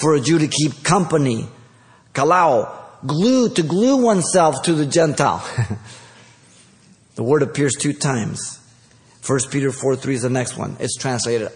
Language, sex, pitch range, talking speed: English, male, 120-165 Hz, 145 wpm